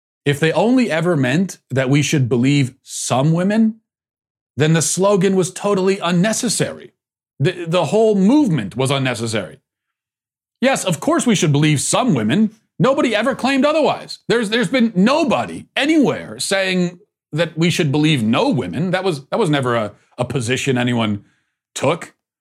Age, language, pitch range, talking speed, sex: 40-59, English, 130-180 Hz, 155 wpm, male